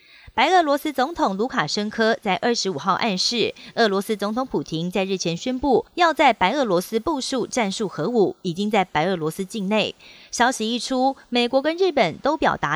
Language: Chinese